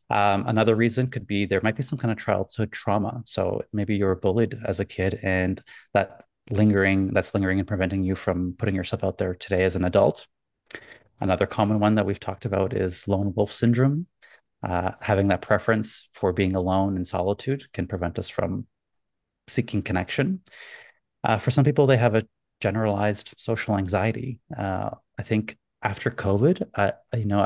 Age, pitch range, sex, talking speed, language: 30-49, 95-115 Hz, male, 175 wpm, English